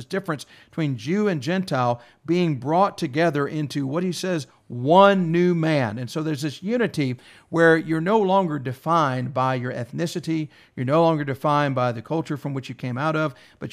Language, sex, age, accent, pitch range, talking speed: English, male, 50-69, American, 135-165 Hz, 185 wpm